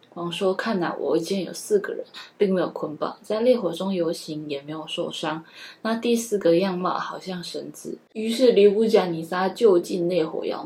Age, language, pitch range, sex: 10-29, Chinese, 175-220 Hz, female